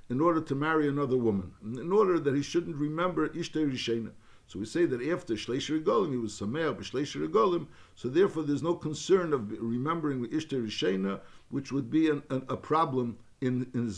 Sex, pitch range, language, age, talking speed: male, 120-155 Hz, English, 60-79, 180 wpm